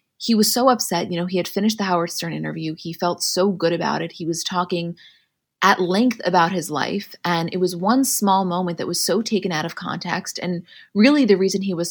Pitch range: 170-205 Hz